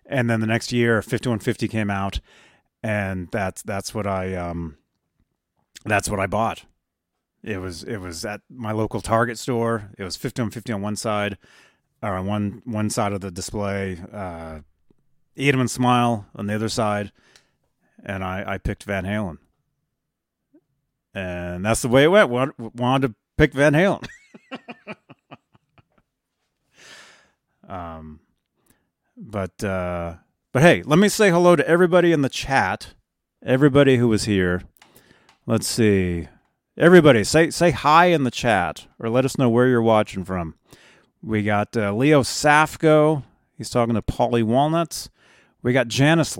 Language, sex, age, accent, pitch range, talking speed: English, male, 30-49, American, 100-150 Hz, 150 wpm